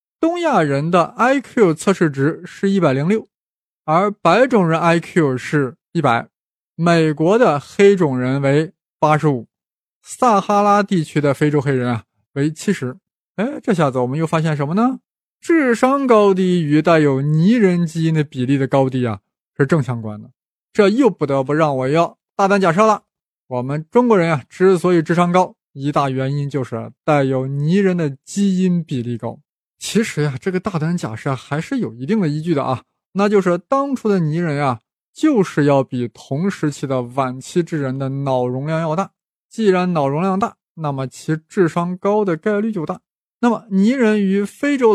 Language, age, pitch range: Chinese, 20-39, 145-200 Hz